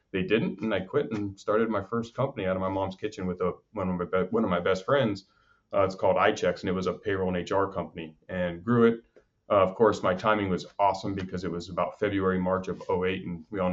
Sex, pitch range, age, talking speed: male, 90-100 Hz, 30-49, 240 wpm